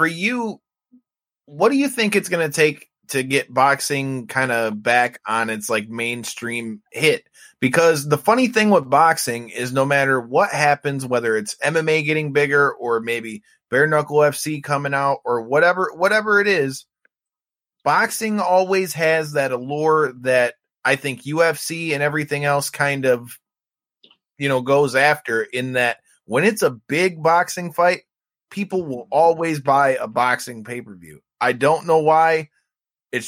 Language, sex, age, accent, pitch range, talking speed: English, male, 20-39, American, 130-170 Hz, 160 wpm